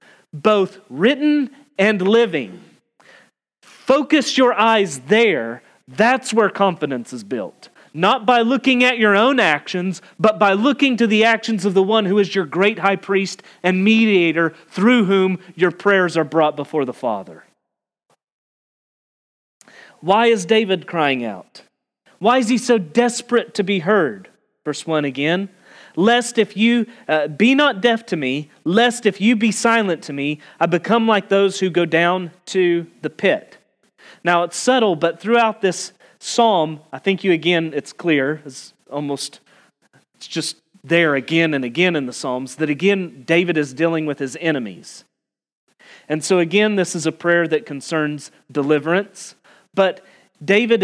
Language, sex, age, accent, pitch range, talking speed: English, male, 30-49, American, 160-220 Hz, 155 wpm